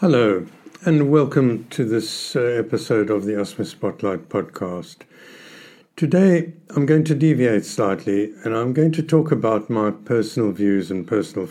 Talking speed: 145 wpm